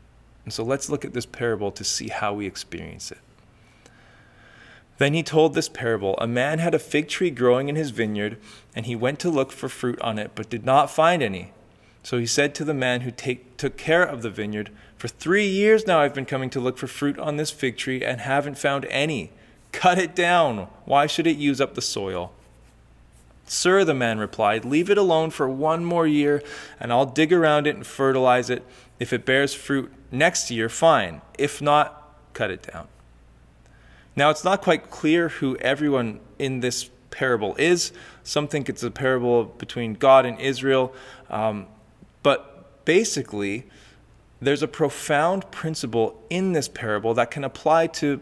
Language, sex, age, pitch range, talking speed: English, male, 20-39, 115-155 Hz, 185 wpm